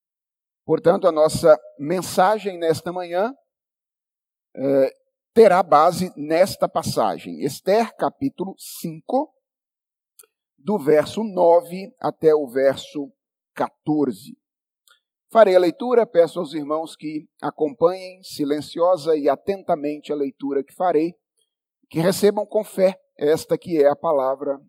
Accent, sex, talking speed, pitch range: Brazilian, male, 105 wpm, 155-235 Hz